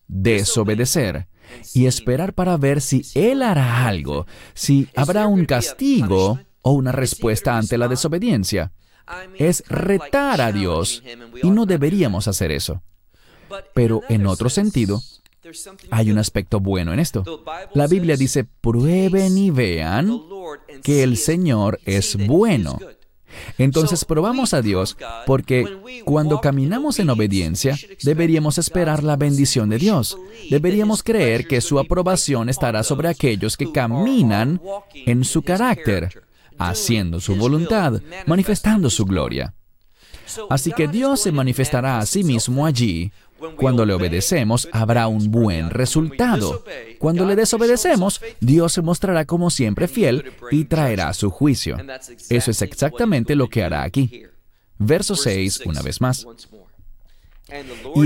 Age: 40-59